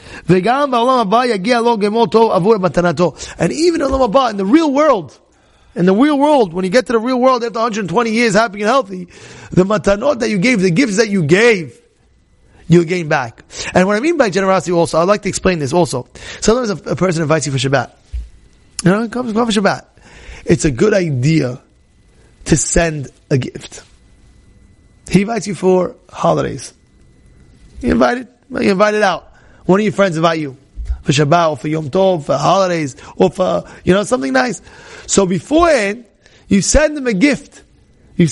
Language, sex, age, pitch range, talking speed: English, male, 30-49, 165-235 Hz, 170 wpm